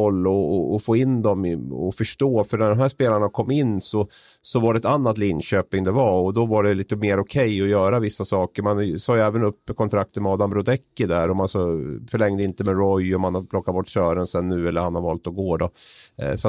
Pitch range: 95-115 Hz